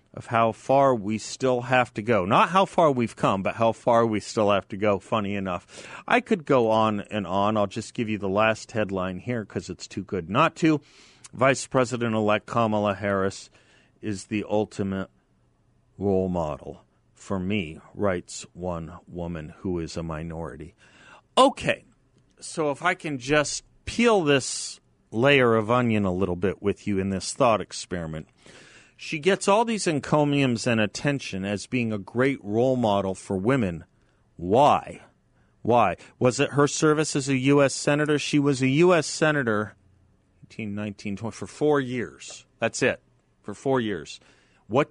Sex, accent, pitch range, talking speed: male, American, 100-135 Hz, 160 wpm